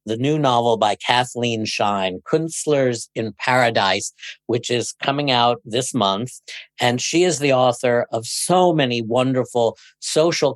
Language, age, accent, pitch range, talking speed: English, 50-69, American, 120-145 Hz, 140 wpm